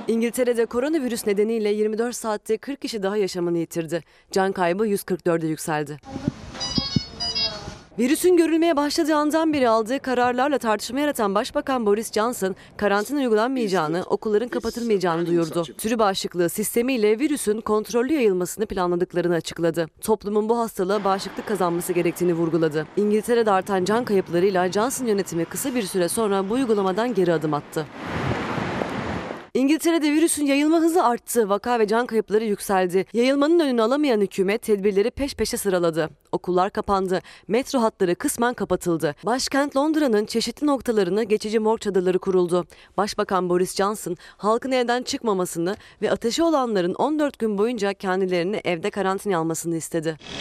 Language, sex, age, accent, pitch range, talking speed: Turkish, female, 30-49, native, 180-240 Hz, 130 wpm